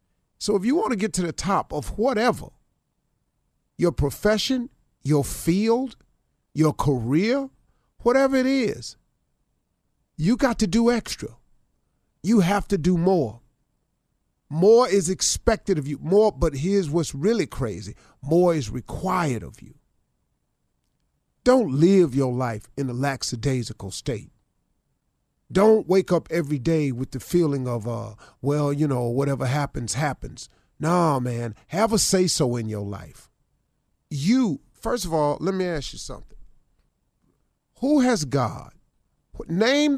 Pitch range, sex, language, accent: 130-200 Hz, male, English, American